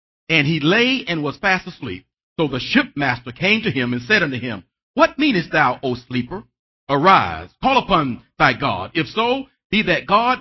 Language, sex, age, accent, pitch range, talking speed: English, male, 40-59, American, 140-230 Hz, 185 wpm